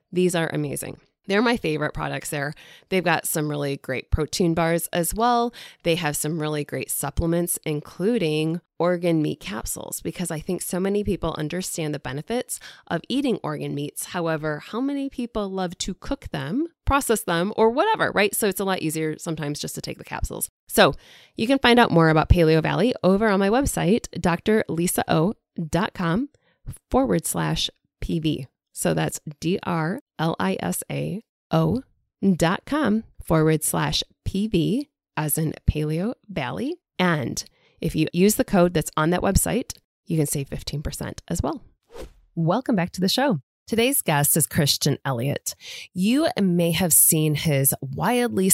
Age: 20-39